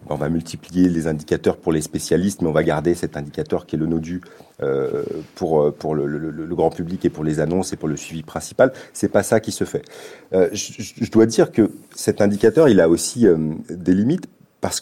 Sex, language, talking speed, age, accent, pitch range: male, French, 205 wpm, 40-59, French, 90-125 Hz